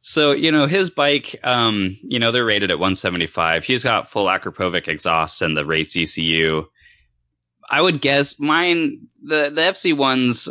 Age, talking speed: 20-39, 165 wpm